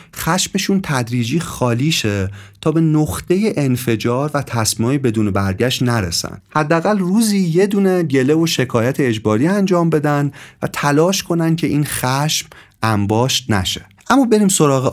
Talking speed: 135 wpm